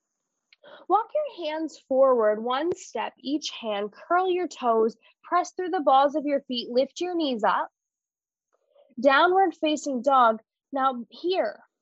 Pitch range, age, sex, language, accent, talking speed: 235-330 Hz, 10-29, female, English, American, 135 wpm